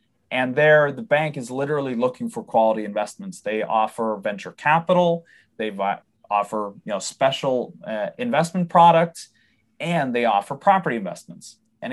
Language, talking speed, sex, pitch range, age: English, 145 wpm, male, 115-150 Hz, 20-39